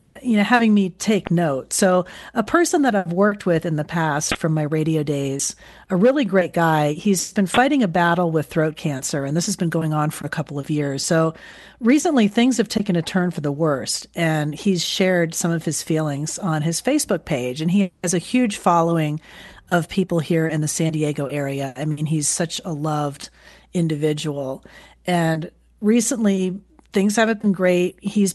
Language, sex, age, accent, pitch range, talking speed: English, female, 40-59, American, 155-200 Hz, 195 wpm